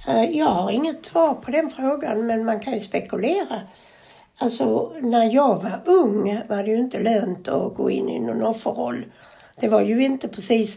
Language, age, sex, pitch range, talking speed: Swedish, 60-79, female, 215-275 Hz, 185 wpm